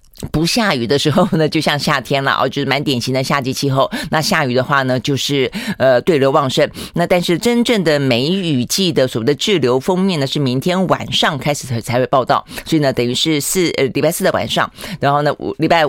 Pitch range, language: 125-155 Hz, Chinese